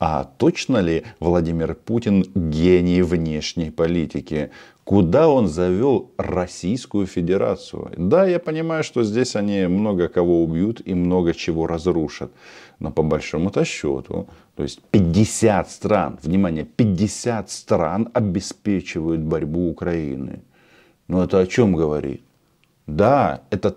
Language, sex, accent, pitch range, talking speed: Russian, male, native, 85-125 Hz, 120 wpm